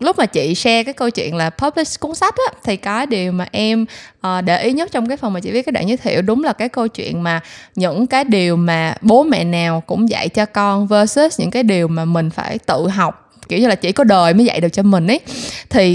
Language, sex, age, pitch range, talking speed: Vietnamese, female, 20-39, 185-250 Hz, 265 wpm